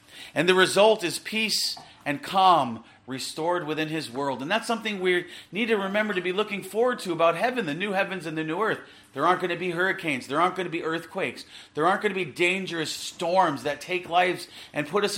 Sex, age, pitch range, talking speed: male, 40-59, 130-195 Hz, 225 wpm